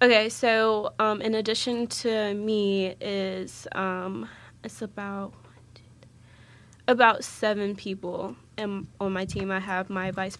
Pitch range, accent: 180-200 Hz, American